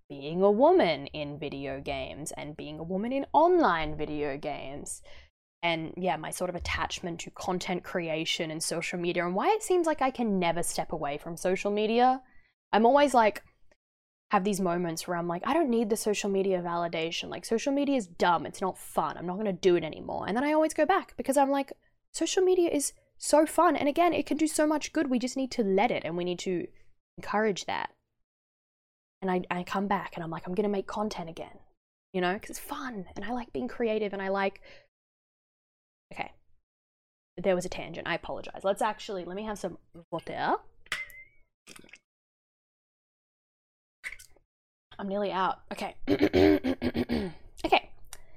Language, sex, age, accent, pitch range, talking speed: English, female, 10-29, Australian, 170-250 Hz, 185 wpm